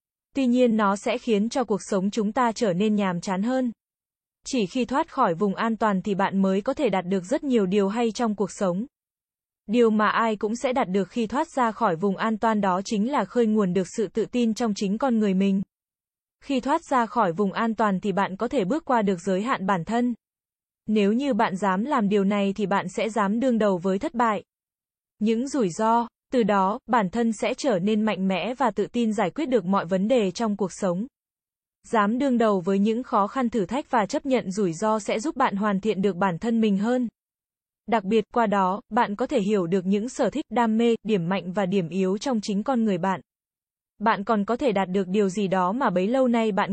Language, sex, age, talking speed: Vietnamese, female, 20-39, 235 wpm